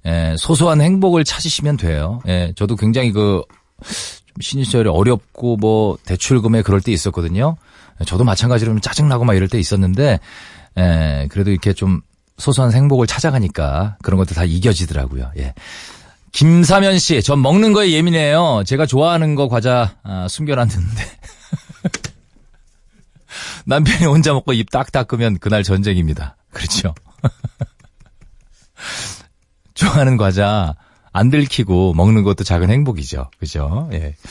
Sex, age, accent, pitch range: male, 40-59, native, 90-145 Hz